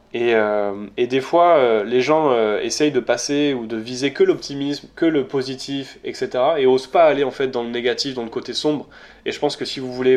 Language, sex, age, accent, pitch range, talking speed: French, male, 20-39, French, 115-140 Hz, 240 wpm